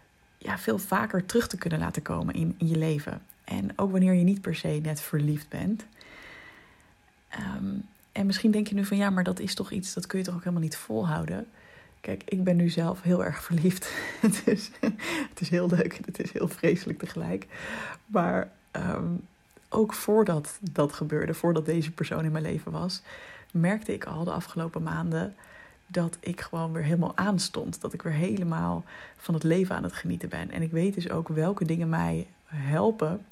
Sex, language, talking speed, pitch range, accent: female, Dutch, 185 wpm, 160-200 Hz, Dutch